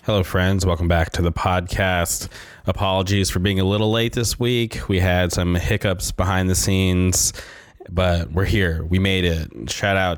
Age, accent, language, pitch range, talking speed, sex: 20-39, American, English, 85-95 Hz, 175 wpm, male